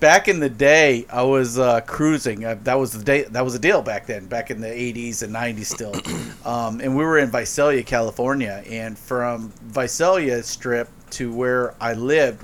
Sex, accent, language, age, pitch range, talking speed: male, American, English, 40-59, 115-140 Hz, 200 wpm